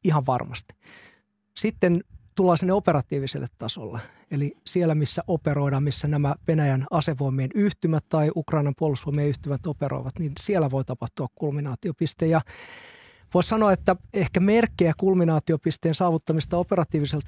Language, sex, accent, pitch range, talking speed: Finnish, male, native, 140-170 Hz, 120 wpm